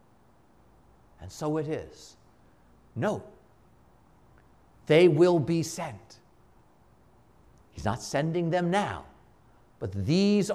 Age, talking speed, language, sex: 50-69, 90 wpm, English, male